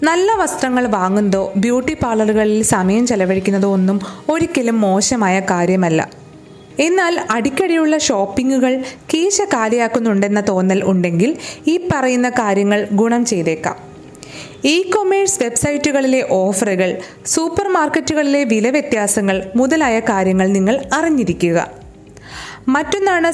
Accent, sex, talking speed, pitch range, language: native, female, 95 wpm, 205-285 Hz, Malayalam